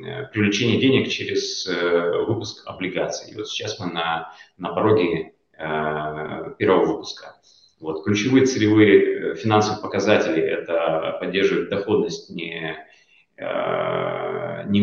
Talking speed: 95 wpm